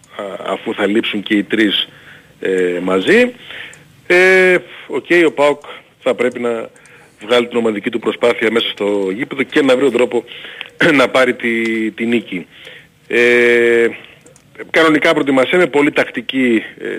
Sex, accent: male, native